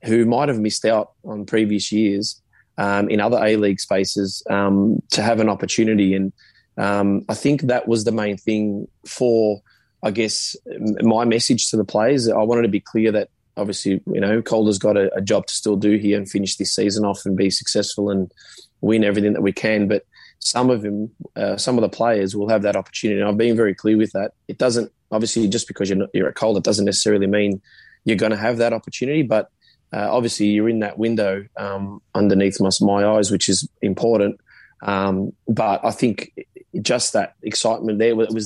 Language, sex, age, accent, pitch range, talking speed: English, male, 20-39, Australian, 100-110 Hz, 210 wpm